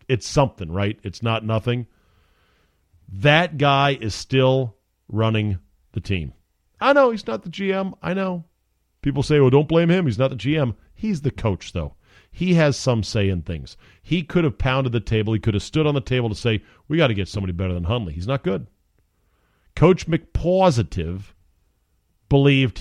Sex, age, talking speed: male, 40-59, 185 wpm